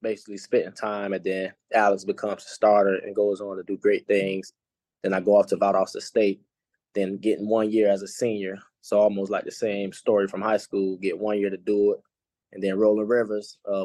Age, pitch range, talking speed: 20-39, 95-105 Hz, 215 wpm